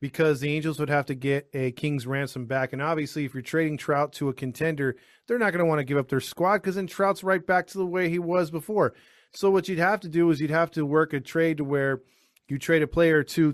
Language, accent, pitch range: English, American, 140-185 Hz